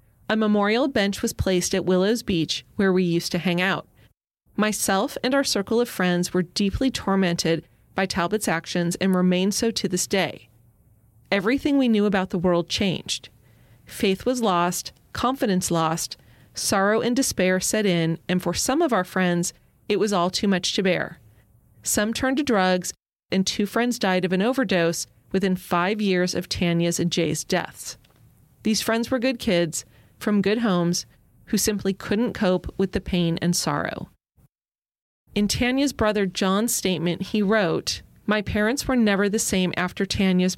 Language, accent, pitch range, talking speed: English, American, 175-215 Hz, 165 wpm